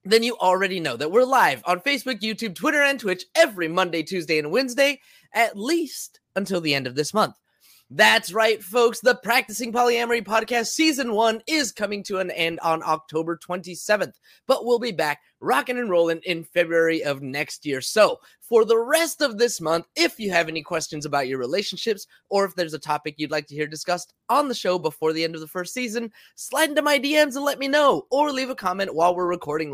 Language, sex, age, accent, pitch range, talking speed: English, male, 20-39, American, 165-250 Hz, 210 wpm